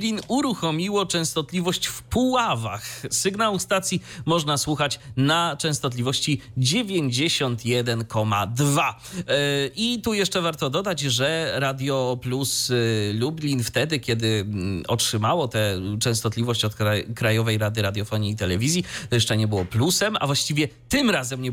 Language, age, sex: Polish, 30-49, male